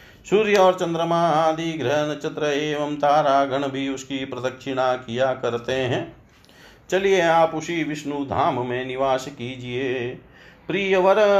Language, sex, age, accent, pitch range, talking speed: Hindi, male, 40-59, native, 135-160 Hz, 120 wpm